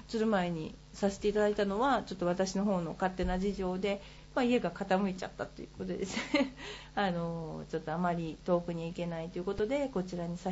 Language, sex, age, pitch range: Japanese, female, 40-59, 180-245 Hz